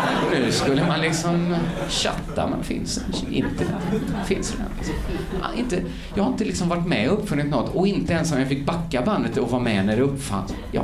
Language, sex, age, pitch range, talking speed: Swedish, male, 30-49, 130-210 Hz, 195 wpm